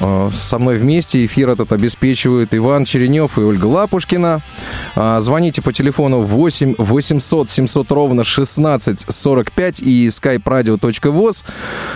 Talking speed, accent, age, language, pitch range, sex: 110 wpm, native, 20-39, Russian, 115-150 Hz, male